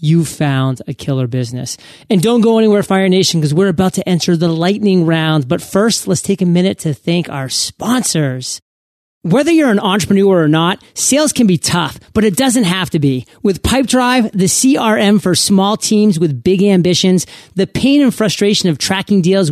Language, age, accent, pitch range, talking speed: English, 30-49, American, 165-215 Hz, 190 wpm